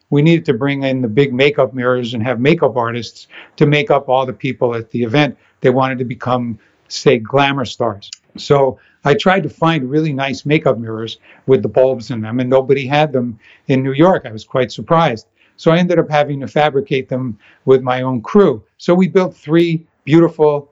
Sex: male